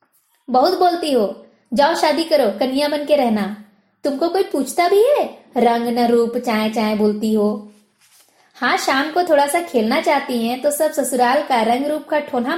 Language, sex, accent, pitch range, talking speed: Hindi, female, native, 220-280 Hz, 175 wpm